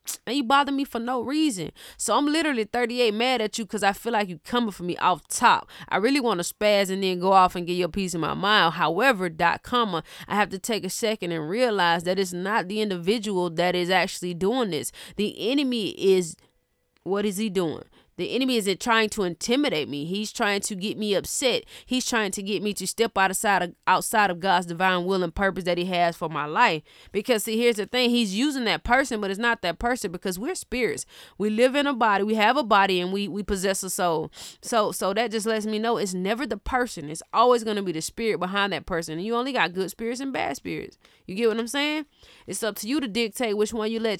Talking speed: 245 wpm